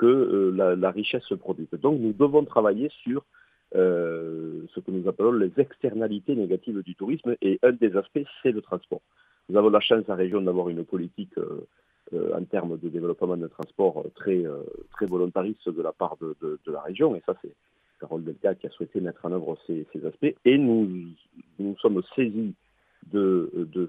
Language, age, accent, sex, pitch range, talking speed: French, 50-69, French, male, 85-145 Hz, 200 wpm